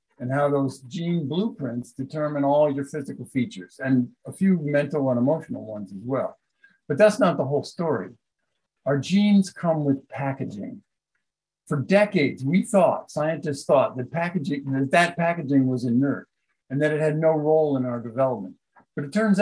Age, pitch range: 50-69, 130-160 Hz